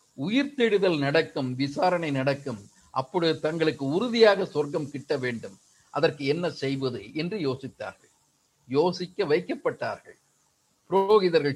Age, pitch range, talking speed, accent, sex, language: 50-69, 145-215 Hz, 100 wpm, native, male, Tamil